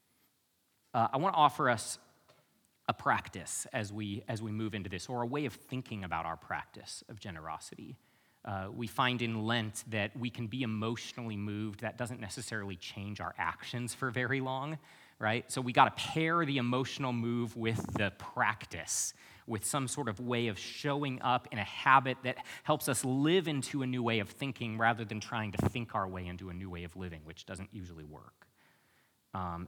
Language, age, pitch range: English, 30-49, 110-140 Hz